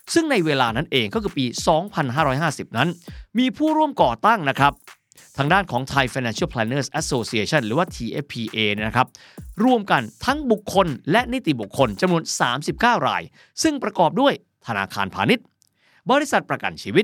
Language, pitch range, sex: Thai, 120-200 Hz, male